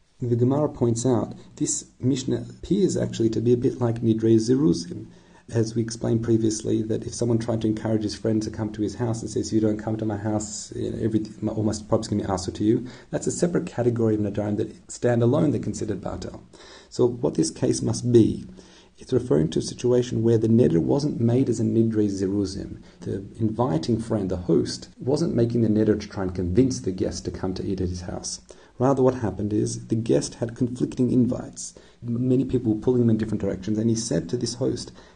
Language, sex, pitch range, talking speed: English, male, 105-120 Hz, 215 wpm